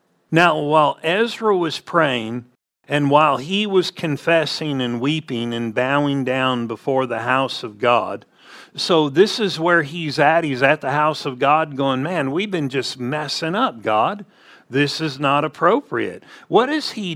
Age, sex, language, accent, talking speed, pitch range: 50-69, male, English, American, 165 wpm, 125-160 Hz